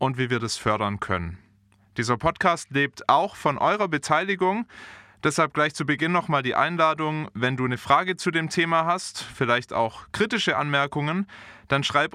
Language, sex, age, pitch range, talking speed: German, male, 20-39, 115-155 Hz, 170 wpm